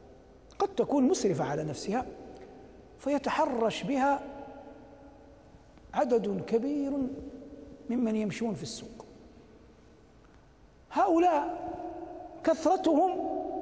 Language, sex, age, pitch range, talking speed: Arabic, male, 60-79, 260-380 Hz, 65 wpm